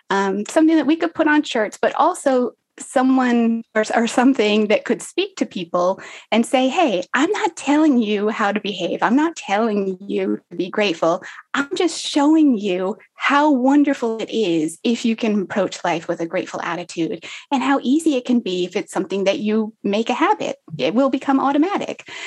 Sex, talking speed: female, 190 wpm